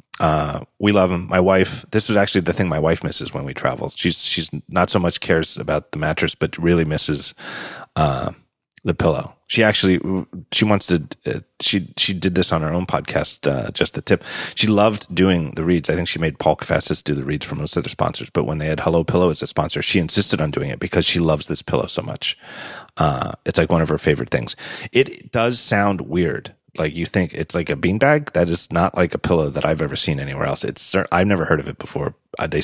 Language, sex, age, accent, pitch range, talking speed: English, male, 30-49, American, 80-100 Hz, 235 wpm